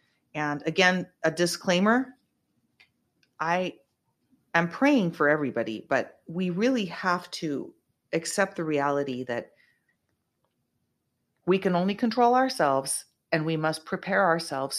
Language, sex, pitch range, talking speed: English, female, 155-250 Hz, 115 wpm